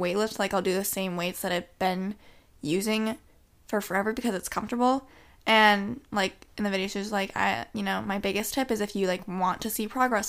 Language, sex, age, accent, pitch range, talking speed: English, female, 20-39, American, 200-245 Hz, 225 wpm